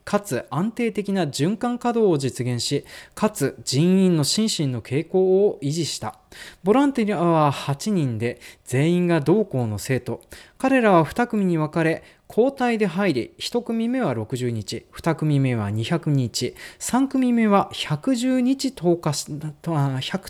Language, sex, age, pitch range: Japanese, male, 20-39, 125-210 Hz